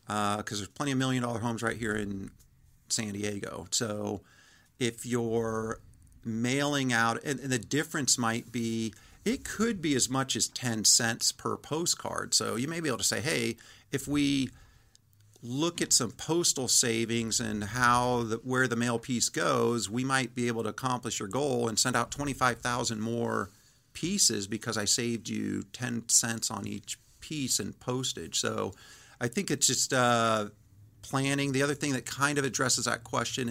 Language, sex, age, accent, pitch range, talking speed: English, male, 50-69, American, 110-130 Hz, 175 wpm